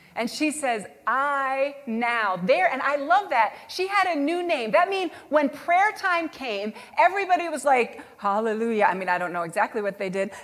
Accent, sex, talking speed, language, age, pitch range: American, female, 195 wpm, English, 40-59, 195-290 Hz